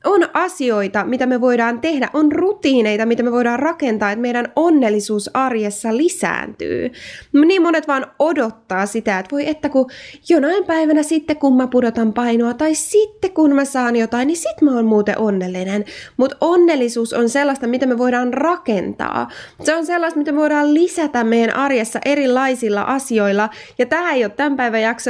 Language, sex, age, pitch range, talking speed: Finnish, female, 20-39, 225-300 Hz, 170 wpm